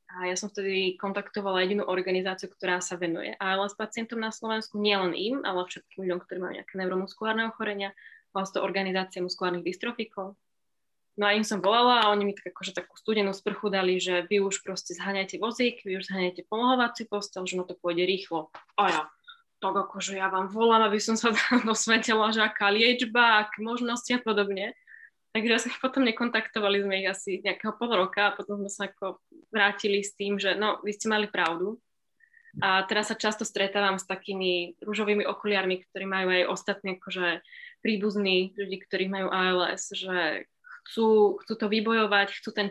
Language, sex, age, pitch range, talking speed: Slovak, female, 10-29, 190-220 Hz, 180 wpm